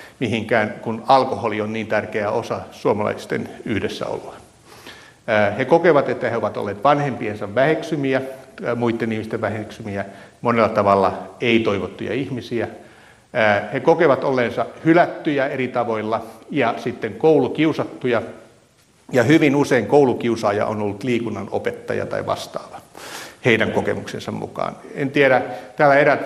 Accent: native